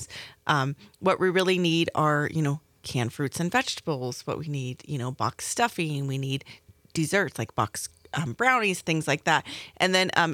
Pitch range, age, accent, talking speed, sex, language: 145-180 Hz, 30-49, American, 185 wpm, female, English